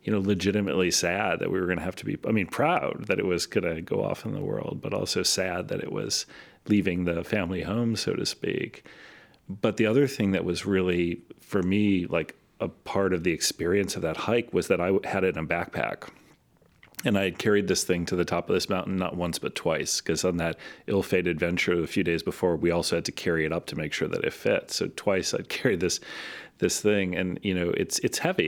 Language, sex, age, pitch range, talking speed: English, male, 40-59, 85-95 Hz, 240 wpm